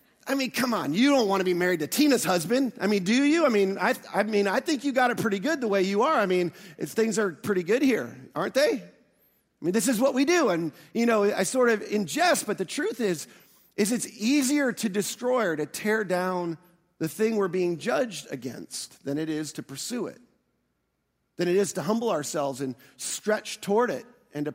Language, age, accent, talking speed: English, 40-59, American, 230 wpm